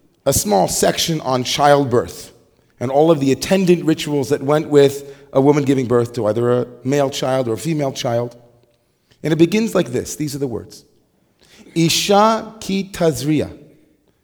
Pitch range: 140-180 Hz